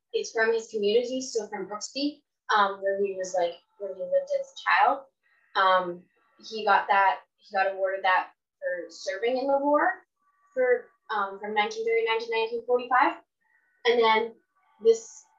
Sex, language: female, English